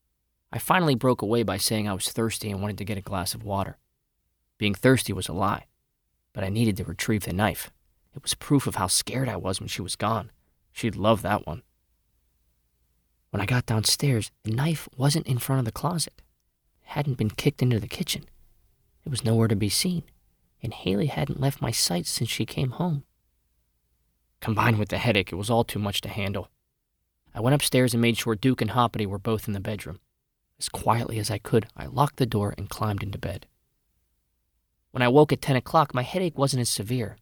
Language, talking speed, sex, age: English, 205 wpm, male, 20-39